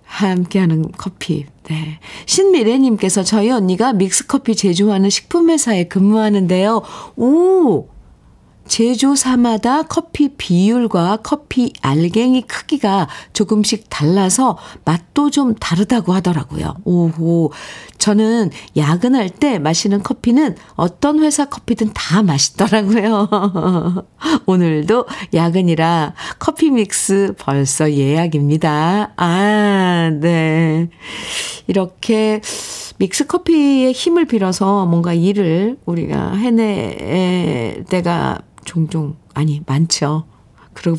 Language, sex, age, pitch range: Korean, female, 50-69, 170-235 Hz